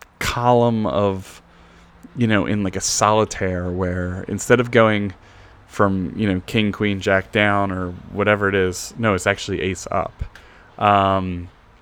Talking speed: 145 wpm